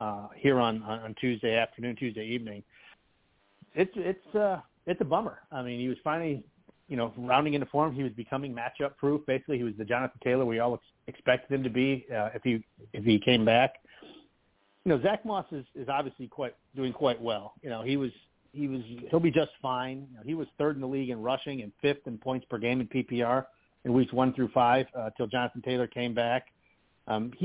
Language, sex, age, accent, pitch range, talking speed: English, male, 40-59, American, 125-165 Hz, 220 wpm